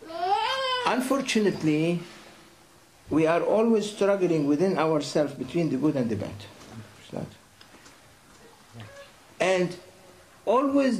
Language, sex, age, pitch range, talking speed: Indonesian, male, 60-79, 125-200 Hz, 95 wpm